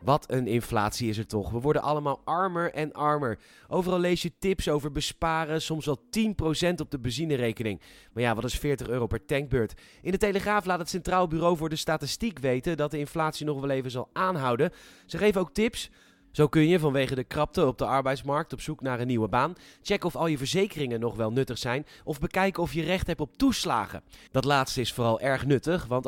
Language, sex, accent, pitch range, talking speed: Dutch, male, Dutch, 130-175 Hz, 215 wpm